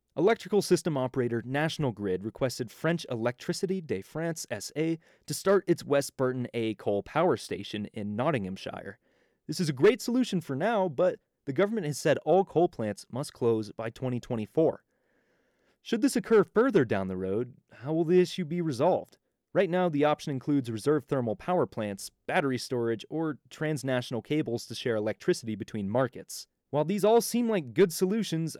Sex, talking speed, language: male, 170 wpm, English